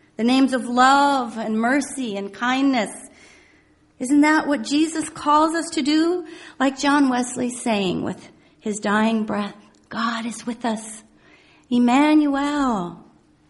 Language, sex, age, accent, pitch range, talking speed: English, female, 40-59, American, 225-310 Hz, 130 wpm